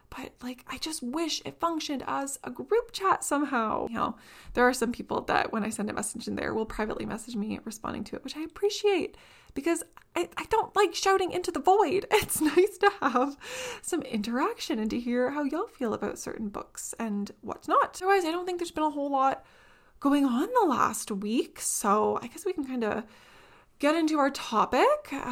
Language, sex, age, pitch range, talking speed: English, female, 20-39, 225-335 Hz, 210 wpm